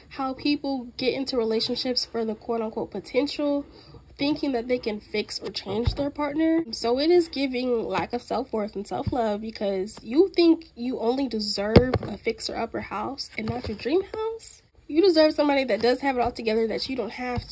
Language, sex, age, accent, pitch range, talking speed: English, female, 10-29, American, 230-315 Hz, 190 wpm